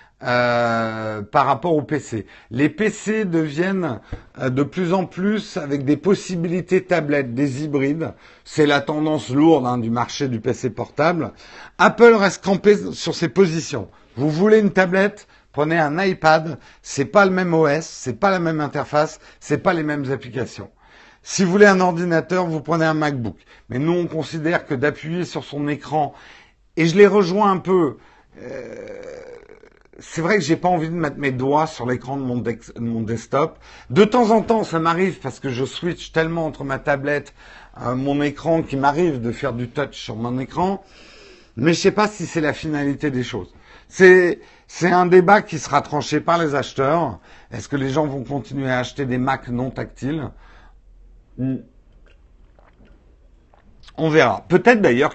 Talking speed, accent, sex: 175 wpm, French, male